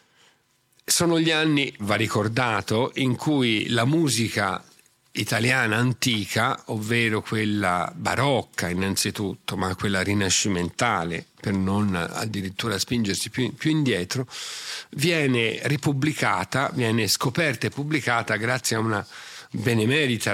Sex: male